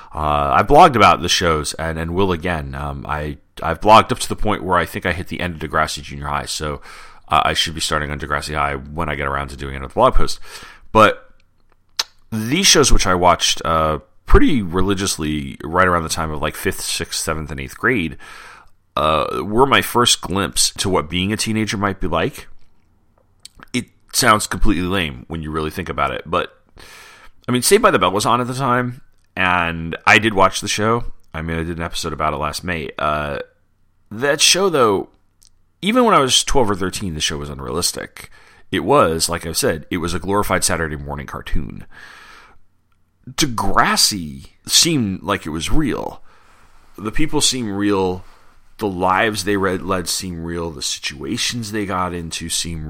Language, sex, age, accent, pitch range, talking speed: English, male, 40-59, American, 75-95 Hz, 190 wpm